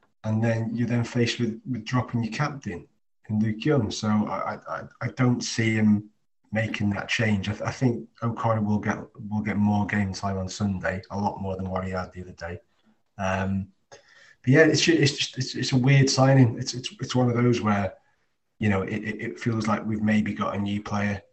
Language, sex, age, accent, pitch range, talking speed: English, male, 30-49, British, 95-120 Hz, 215 wpm